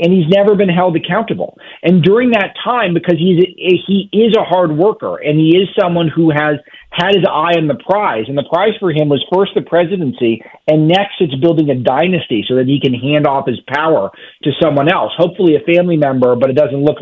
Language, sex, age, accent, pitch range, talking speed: English, male, 40-59, American, 145-185 Hz, 220 wpm